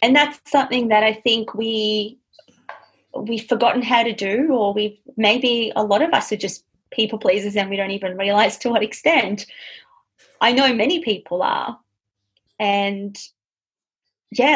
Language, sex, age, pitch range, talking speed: English, female, 30-49, 200-235 Hz, 155 wpm